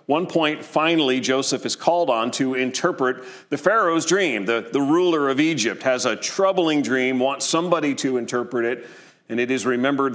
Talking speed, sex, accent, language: 175 wpm, male, American, English